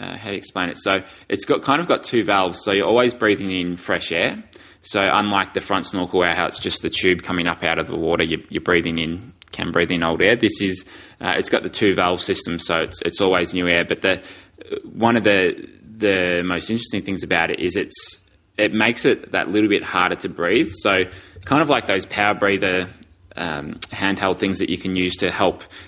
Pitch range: 90-105 Hz